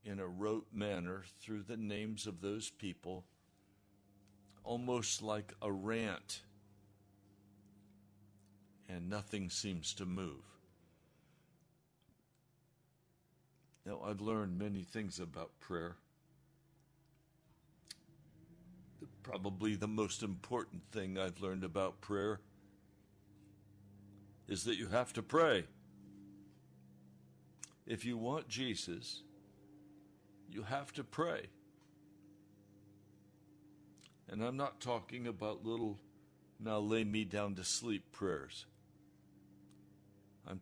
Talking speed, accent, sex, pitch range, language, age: 95 wpm, American, male, 100-115 Hz, English, 60-79